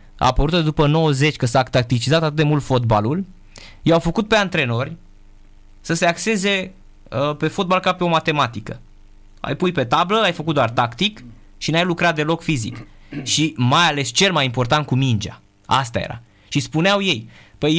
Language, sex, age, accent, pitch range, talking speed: Romanian, male, 20-39, native, 125-175 Hz, 175 wpm